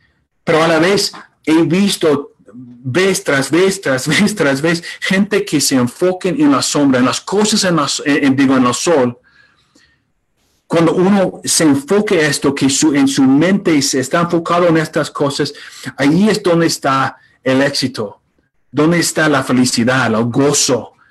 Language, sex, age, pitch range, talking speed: Spanish, male, 50-69, 130-170 Hz, 170 wpm